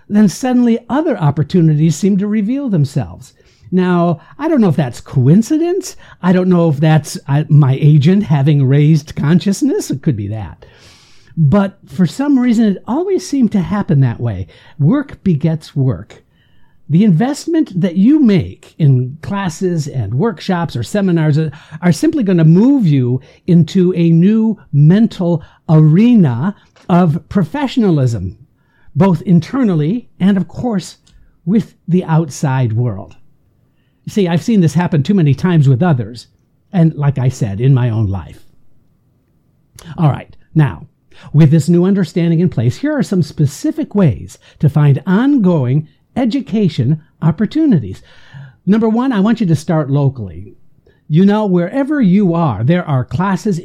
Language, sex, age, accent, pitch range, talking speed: English, male, 60-79, American, 145-200 Hz, 145 wpm